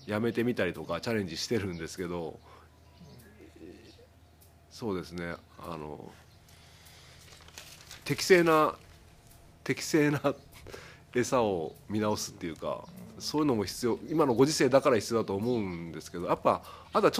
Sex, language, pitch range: male, Japanese, 90-140 Hz